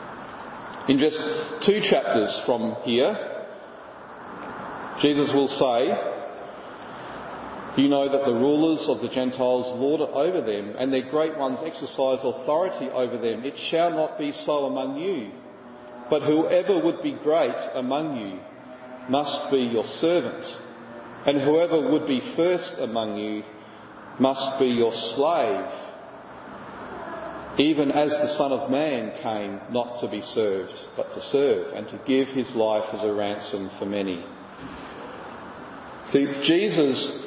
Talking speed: 130 wpm